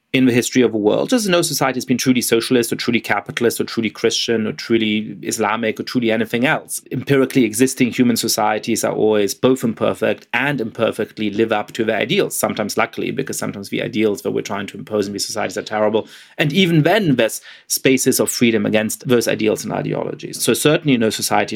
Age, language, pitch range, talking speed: 30-49, English, 110-135 Hz, 205 wpm